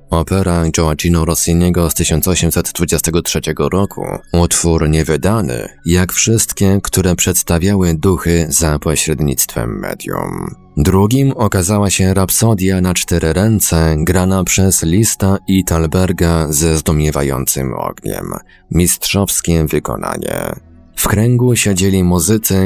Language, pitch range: Polish, 80-95 Hz